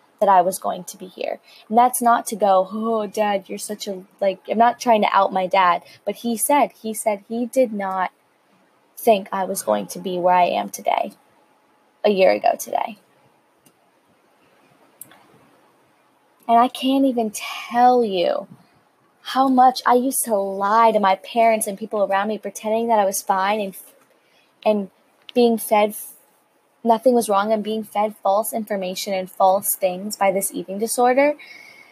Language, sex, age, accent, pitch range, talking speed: English, female, 20-39, American, 195-245 Hz, 170 wpm